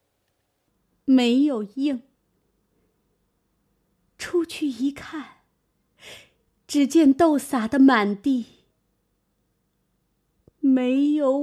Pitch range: 260-345 Hz